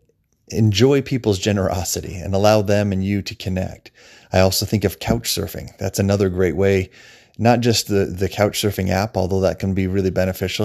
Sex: male